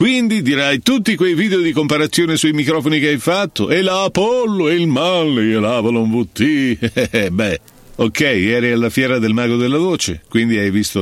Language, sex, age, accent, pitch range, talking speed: Italian, male, 50-69, native, 95-155 Hz, 185 wpm